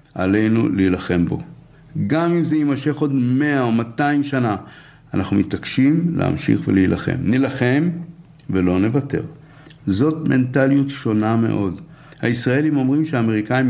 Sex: male